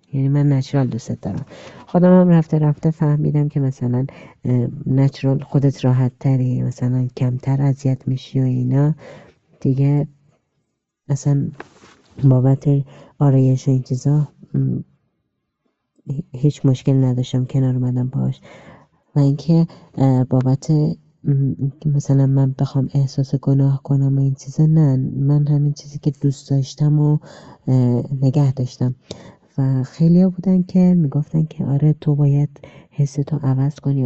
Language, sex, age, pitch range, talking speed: English, female, 30-49, 130-145 Hz, 120 wpm